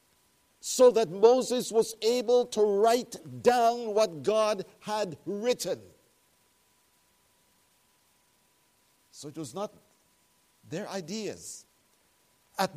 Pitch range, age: 175-220 Hz, 50-69